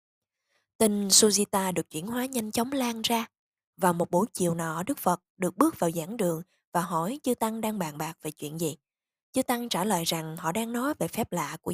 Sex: female